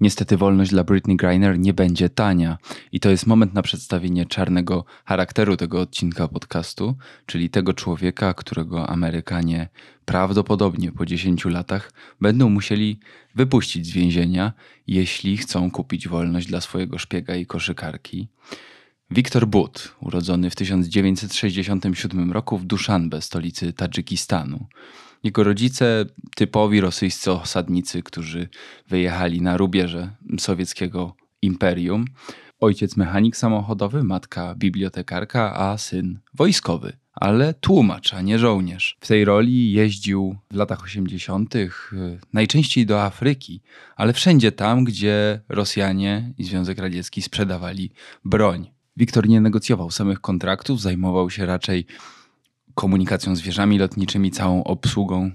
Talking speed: 120 wpm